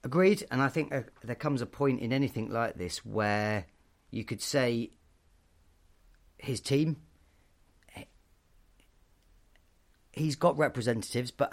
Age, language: 40-59, English